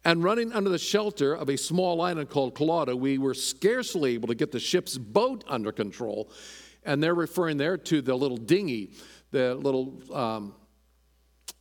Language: English